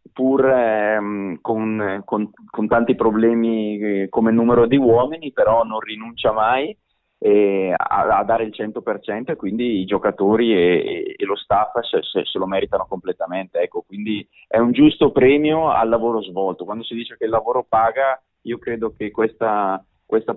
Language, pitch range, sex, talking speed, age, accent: Italian, 95-115 Hz, male, 165 wpm, 30-49, native